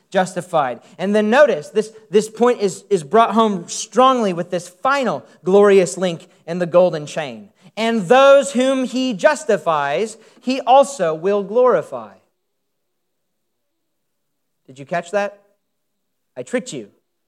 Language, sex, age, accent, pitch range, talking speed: English, male, 40-59, American, 185-240 Hz, 130 wpm